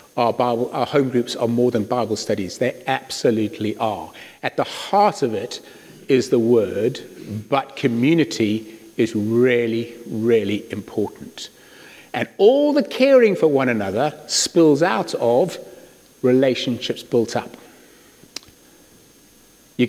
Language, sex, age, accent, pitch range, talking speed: English, male, 50-69, British, 120-140 Hz, 120 wpm